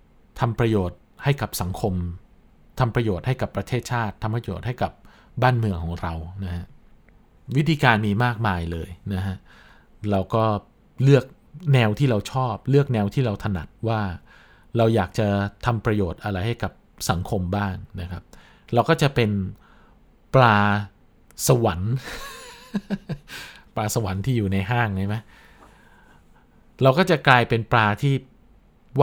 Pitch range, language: 95-120 Hz, Thai